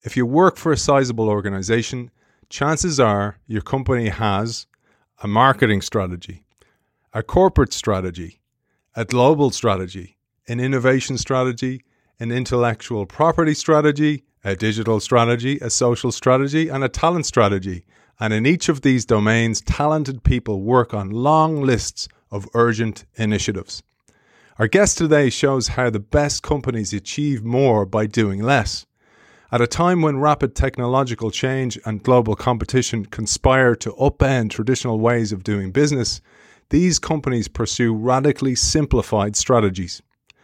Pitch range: 105-140 Hz